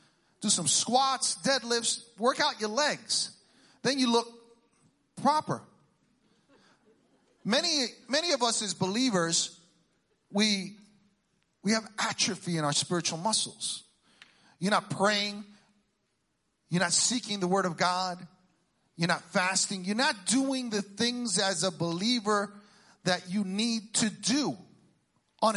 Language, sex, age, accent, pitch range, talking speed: English, male, 40-59, American, 165-230 Hz, 125 wpm